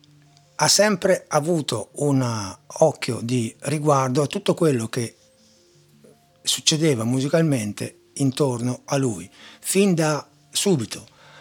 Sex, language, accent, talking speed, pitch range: male, Italian, native, 100 wpm, 125-160 Hz